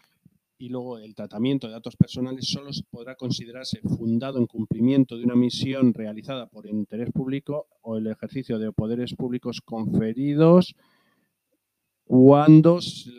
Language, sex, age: Spanish, male, 40-59